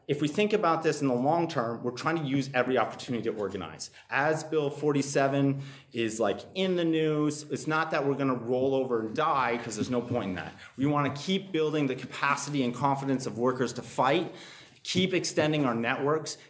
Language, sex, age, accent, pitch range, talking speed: English, male, 30-49, American, 115-145 Hz, 205 wpm